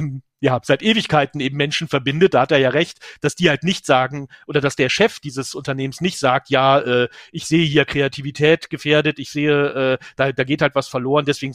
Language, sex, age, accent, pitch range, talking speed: English, male, 40-59, German, 130-150 Hz, 215 wpm